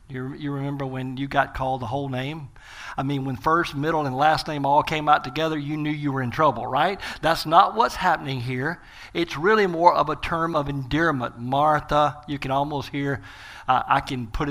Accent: American